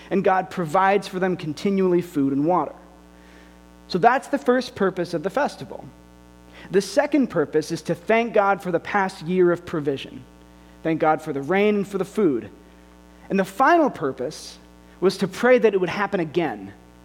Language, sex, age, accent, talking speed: English, male, 30-49, American, 180 wpm